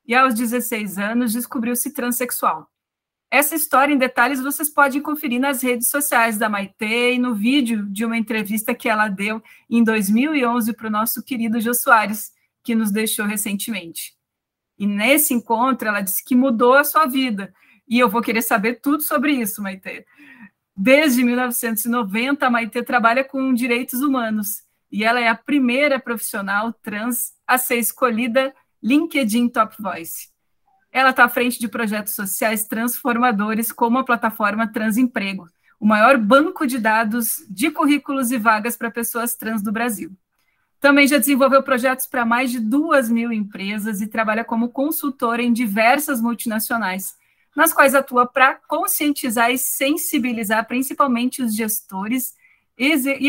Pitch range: 225-270 Hz